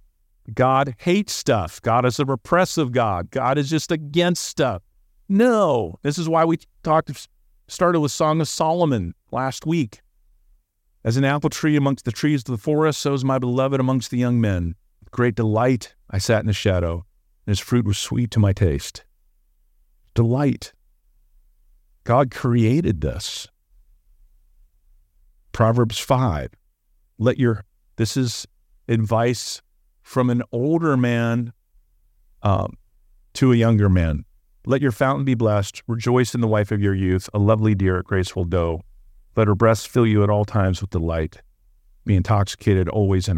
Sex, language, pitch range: male, English, 100-140 Hz